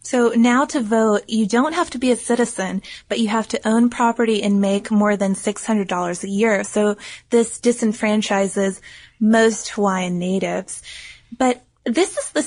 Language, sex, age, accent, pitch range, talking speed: English, female, 20-39, American, 200-230 Hz, 165 wpm